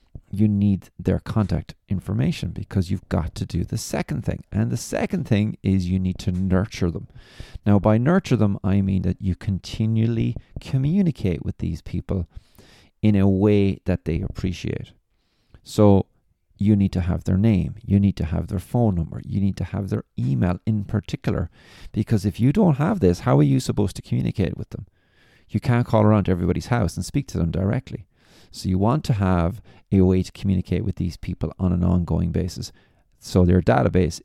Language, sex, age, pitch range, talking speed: English, male, 40-59, 90-115 Hz, 190 wpm